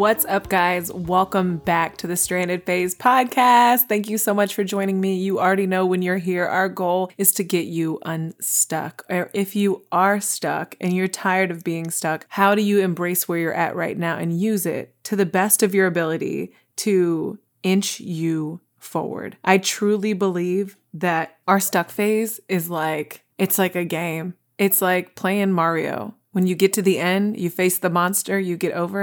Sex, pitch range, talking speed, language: female, 175-195 Hz, 190 wpm, English